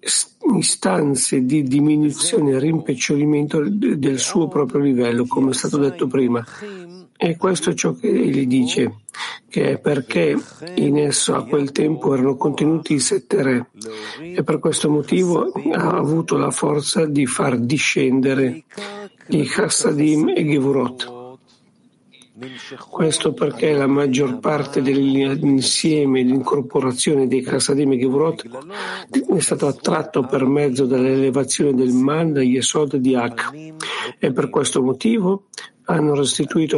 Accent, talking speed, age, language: native, 125 wpm, 50-69, Italian